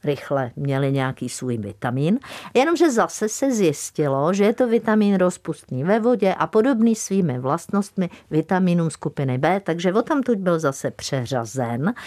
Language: Czech